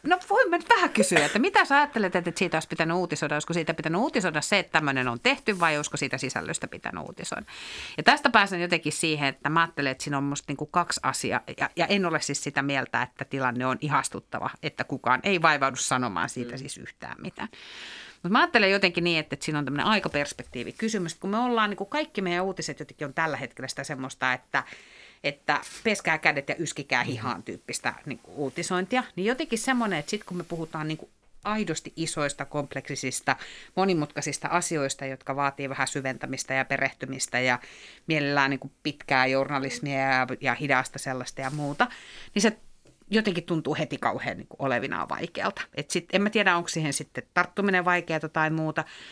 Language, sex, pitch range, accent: Finnish, female, 140-185 Hz, native